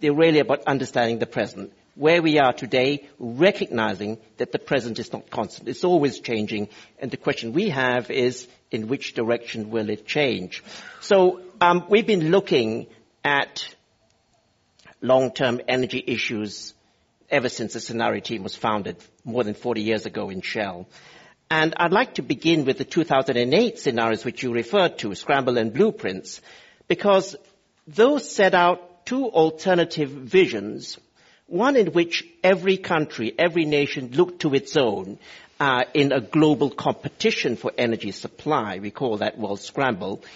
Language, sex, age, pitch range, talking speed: English, male, 60-79, 120-175 Hz, 150 wpm